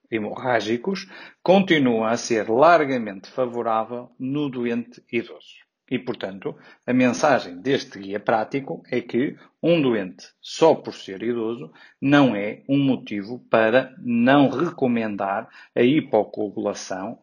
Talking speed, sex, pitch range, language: 115 wpm, male, 115-140 Hz, Portuguese